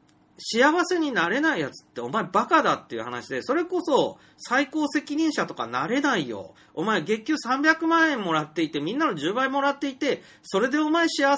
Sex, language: male, Japanese